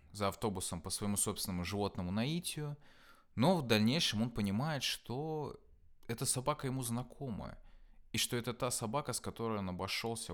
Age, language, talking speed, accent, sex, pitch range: 20-39, Russian, 150 wpm, native, male, 90-115 Hz